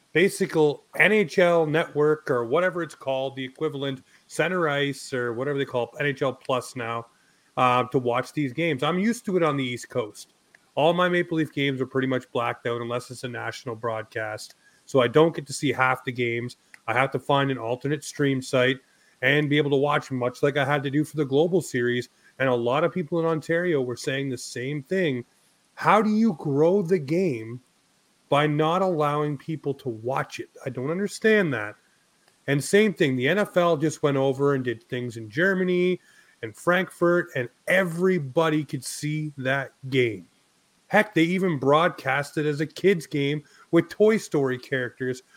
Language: English